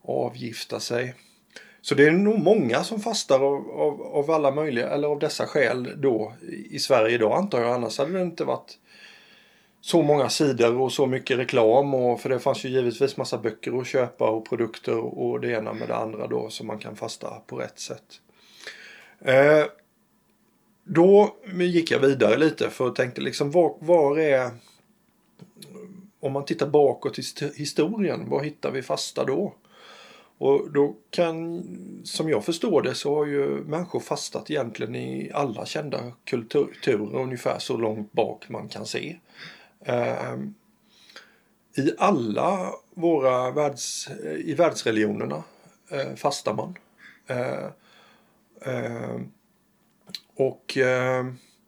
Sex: male